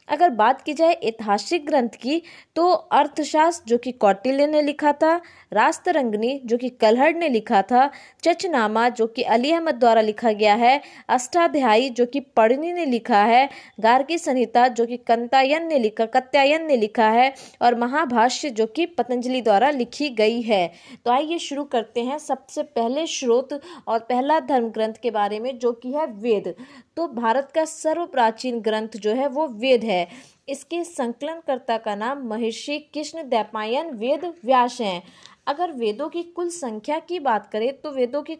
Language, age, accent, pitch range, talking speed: Hindi, 20-39, native, 230-300 Hz, 170 wpm